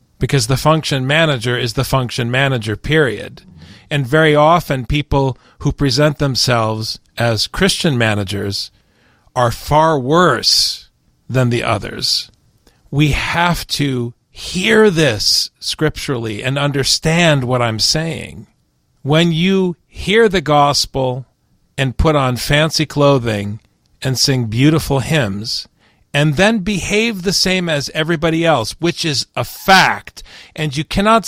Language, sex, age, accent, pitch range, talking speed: English, male, 40-59, American, 120-155 Hz, 125 wpm